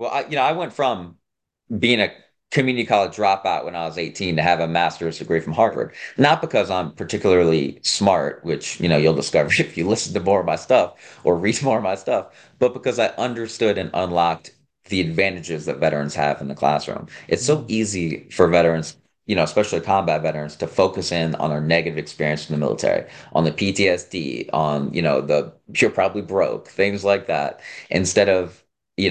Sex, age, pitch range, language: male, 30-49, 80-95 Hz, English